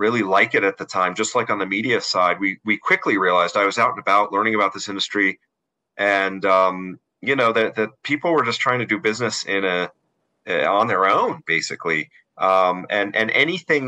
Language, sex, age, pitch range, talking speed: English, male, 40-59, 95-110 Hz, 210 wpm